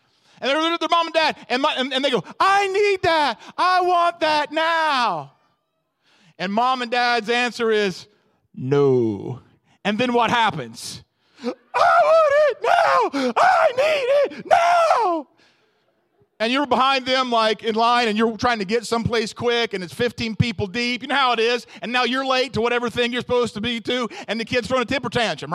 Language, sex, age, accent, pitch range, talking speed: English, male, 40-59, American, 230-305 Hz, 195 wpm